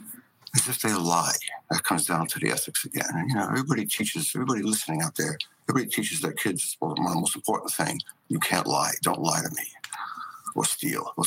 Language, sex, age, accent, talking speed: English, male, 60-79, American, 210 wpm